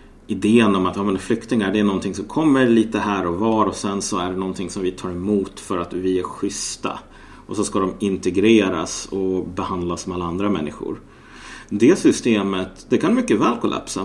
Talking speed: 205 wpm